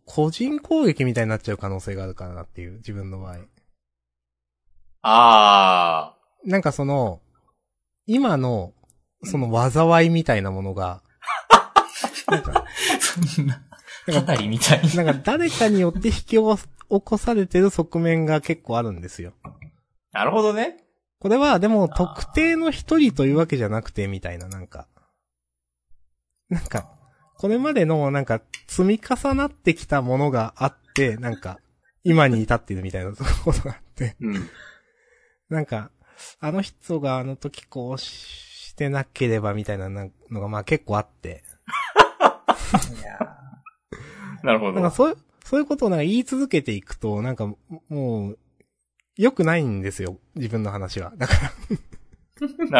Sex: male